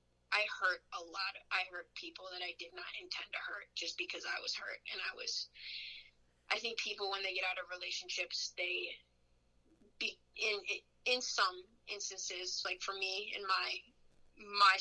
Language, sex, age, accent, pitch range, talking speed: English, female, 20-39, American, 180-210 Hz, 175 wpm